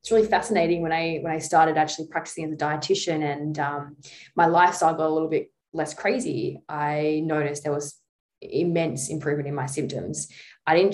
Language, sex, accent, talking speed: English, female, Australian, 185 wpm